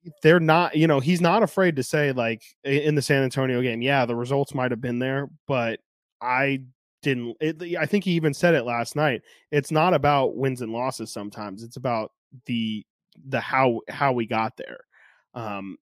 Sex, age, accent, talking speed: male, 20-39, American, 195 wpm